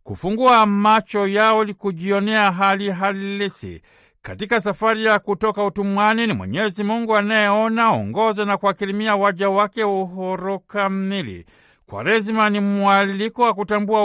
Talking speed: 120 wpm